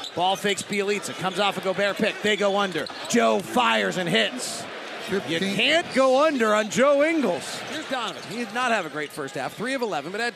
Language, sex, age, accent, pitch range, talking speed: English, male, 40-59, American, 195-260 Hz, 215 wpm